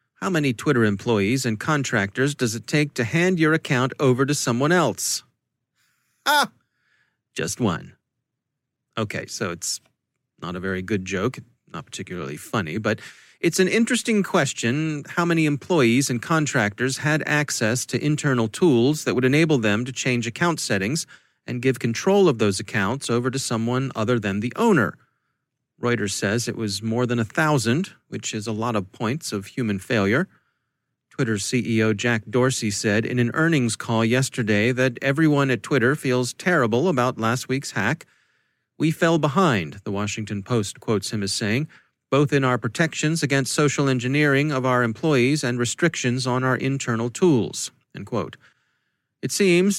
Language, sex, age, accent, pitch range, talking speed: English, male, 30-49, American, 115-150 Hz, 160 wpm